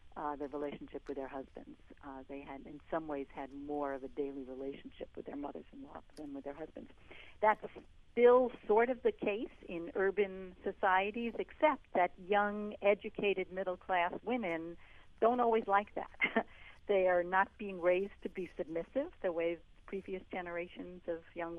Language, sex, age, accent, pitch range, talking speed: English, female, 60-79, American, 160-200 Hz, 170 wpm